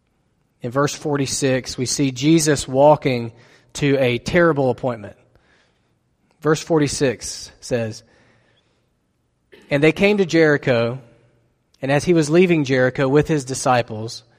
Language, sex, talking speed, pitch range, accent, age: English, male, 115 wpm, 120-150 Hz, American, 40-59